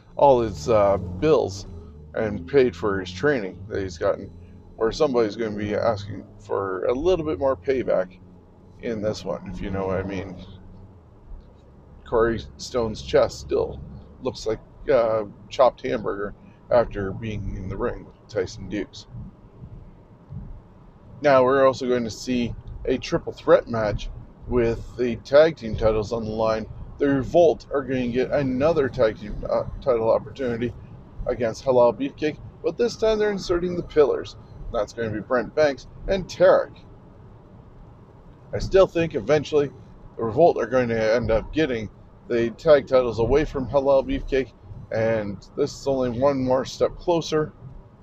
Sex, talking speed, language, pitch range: male, 155 wpm, English, 105-140 Hz